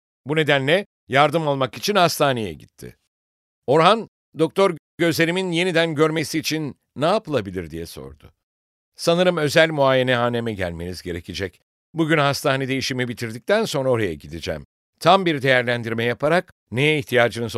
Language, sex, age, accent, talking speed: English, male, 60-79, Turkish, 125 wpm